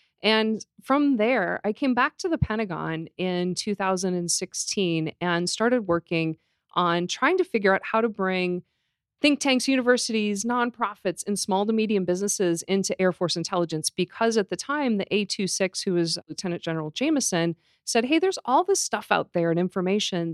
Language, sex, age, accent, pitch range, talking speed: English, female, 40-59, American, 175-220 Hz, 165 wpm